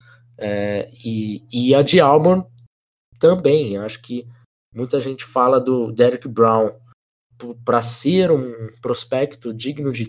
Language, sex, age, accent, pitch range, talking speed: Portuguese, male, 20-39, Brazilian, 115-145 Hz, 125 wpm